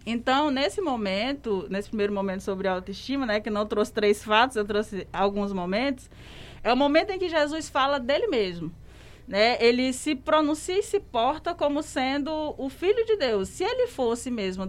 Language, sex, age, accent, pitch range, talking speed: Portuguese, female, 20-39, Brazilian, 200-280 Hz, 180 wpm